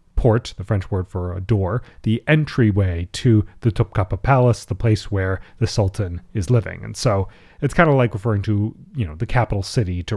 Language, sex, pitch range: English, male, 100-135 Hz